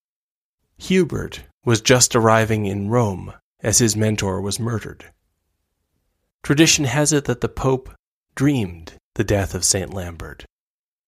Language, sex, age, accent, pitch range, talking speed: English, male, 20-39, American, 95-120 Hz, 125 wpm